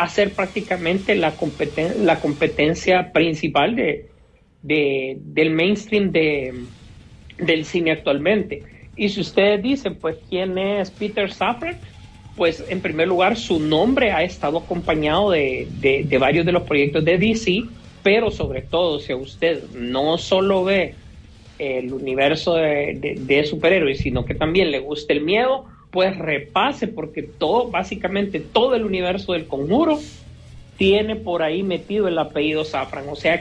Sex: male